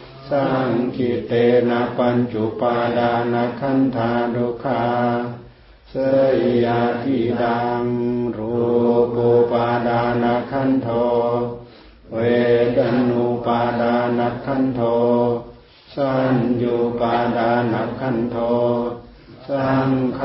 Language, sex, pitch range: Thai, male, 115-120 Hz